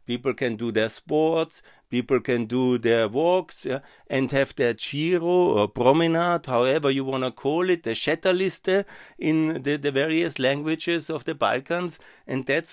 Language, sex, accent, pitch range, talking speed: German, male, German, 120-150 Hz, 165 wpm